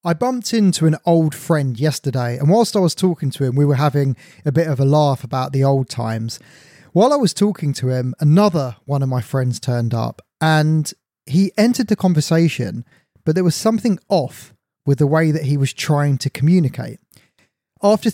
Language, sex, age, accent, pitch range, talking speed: English, male, 20-39, British, 135-175 Hz, 195 wpm